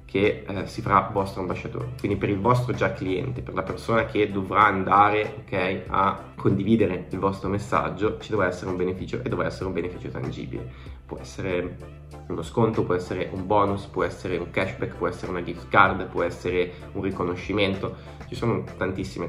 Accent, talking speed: native, 185 wpm